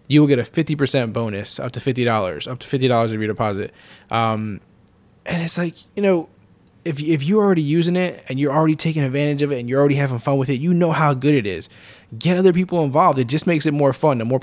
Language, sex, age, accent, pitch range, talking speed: English, male, 20-39, American, 120-150 Hz, 245 wpm